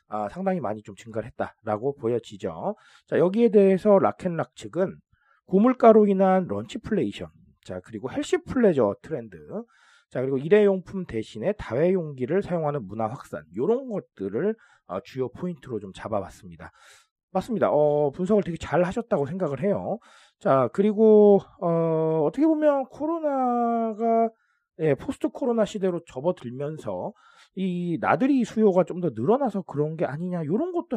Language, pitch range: Korean, 120-205 Hz